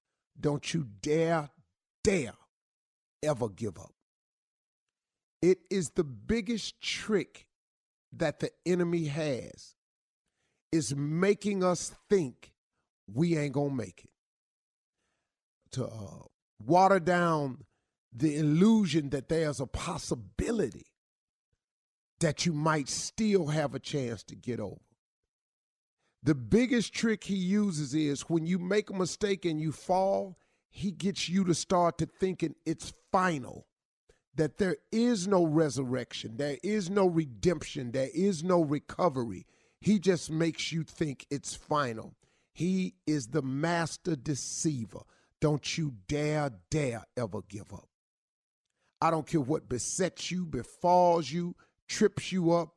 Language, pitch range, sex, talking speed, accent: English, 140-180 Hz, male, 125 wpm, American